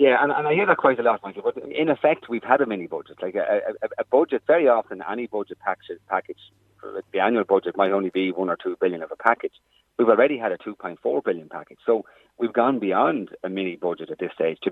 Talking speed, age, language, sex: 230 wpm, 40-59, English, male